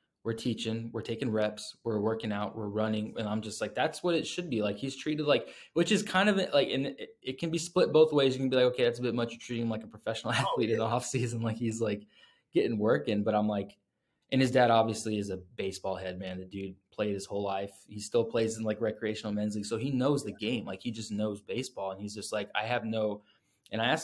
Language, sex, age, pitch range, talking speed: English, male, 20-39, 100-115 Hz, 265 wpm